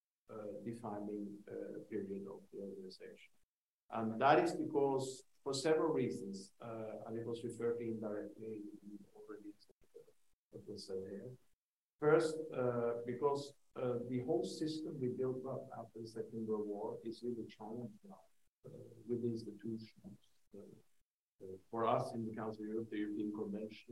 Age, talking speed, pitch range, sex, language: 50-69, 150 wpm, 105-150 Hz, male, English